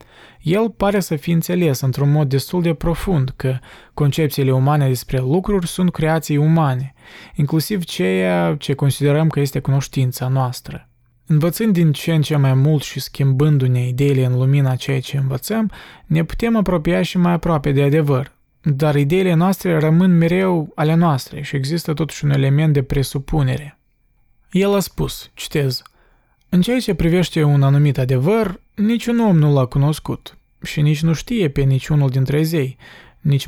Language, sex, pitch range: Romanian, male, 135-170 Hz